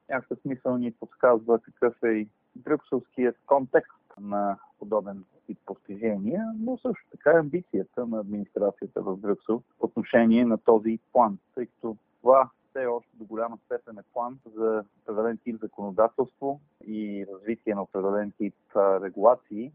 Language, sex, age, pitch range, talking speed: Bulgarian, male, 40-59, 105-125 Hz, 150 wpm